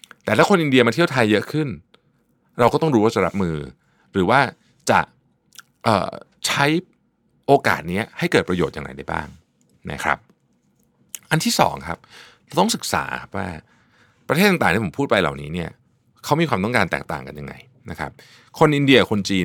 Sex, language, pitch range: male, Thai, 90-140 Hz